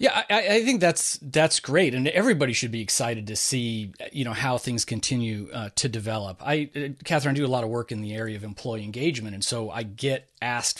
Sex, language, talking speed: male, English, 220 wpm